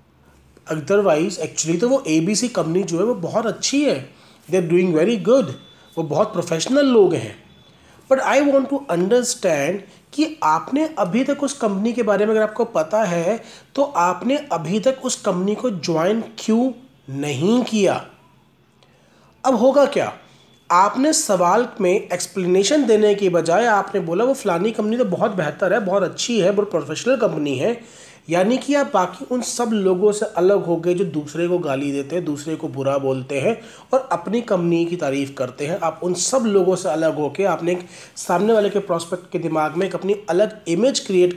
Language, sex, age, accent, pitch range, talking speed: Hindi, male, 30-49, native, 170-230 Hz, 180 wpm